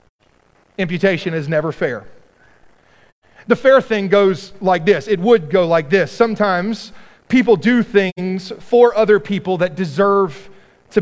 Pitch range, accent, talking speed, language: 180-235 Hz, American, 135 wpm, English